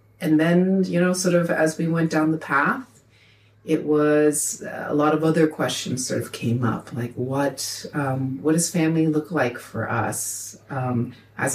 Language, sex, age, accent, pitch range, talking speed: English, female, 30-49, American, 125-150 Hz, 180 wpm